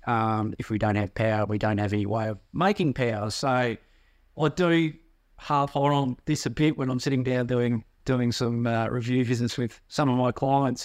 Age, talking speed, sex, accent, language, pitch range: 30-49, 205 wpm, male, Australian, English, 110-130 Hz